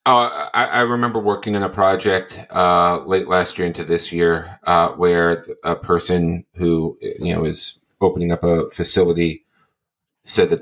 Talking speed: 165 wpm